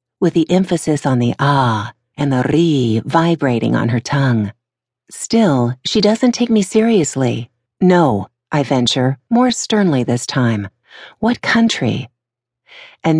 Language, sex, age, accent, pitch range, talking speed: English, female, 50-69, American, 120-165 Hz, 130 wpm